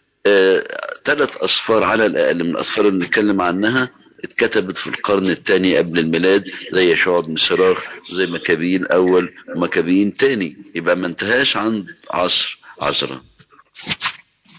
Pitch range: 90-145 Hz